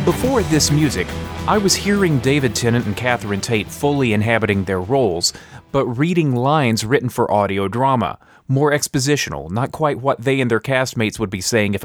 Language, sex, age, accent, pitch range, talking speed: English, male, 30-49, American, 105-140 Hz, 175 wpm